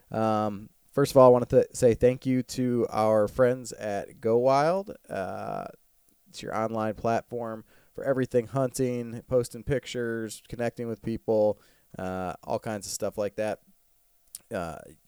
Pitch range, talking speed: 105-125 Hz, 150 wpm